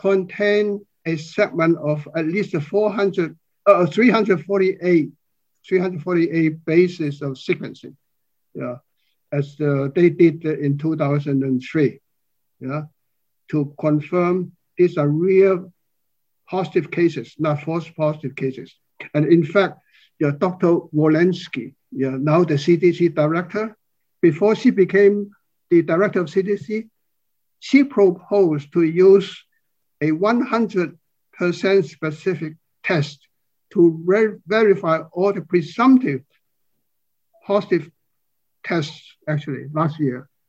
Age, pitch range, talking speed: 60-79, 150-190 Hz, 115 wpm